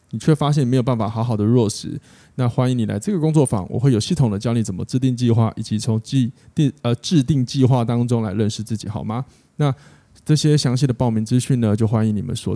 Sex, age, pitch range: male, 20-39, 110-135 Hz